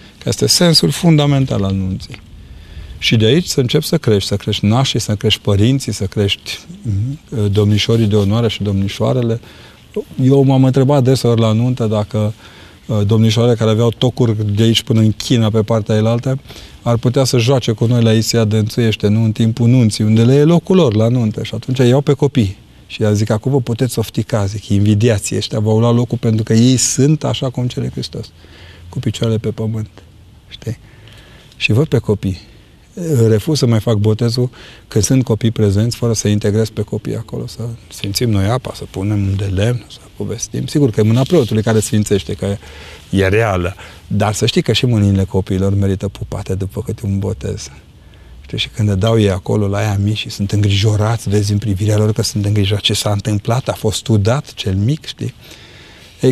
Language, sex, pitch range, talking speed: Romanian, male, 105-120 Hz, 190 wpm